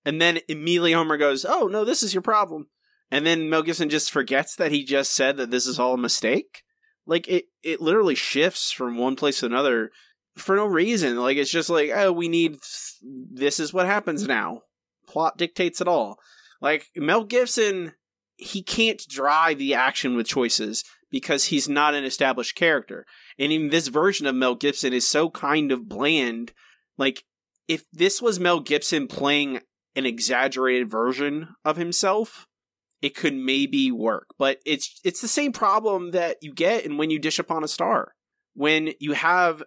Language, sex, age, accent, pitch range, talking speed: English, male, 20-39, American, 140-205 Hz, 180 wpm